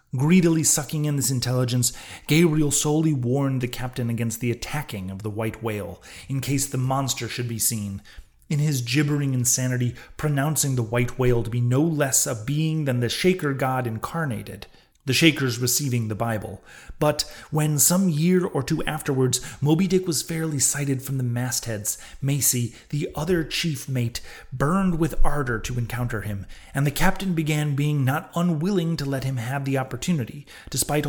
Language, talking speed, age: English, 170 wpm, 30-49